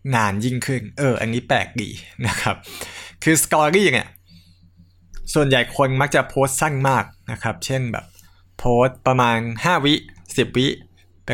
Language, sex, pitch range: Thai, male, 100-135 Hz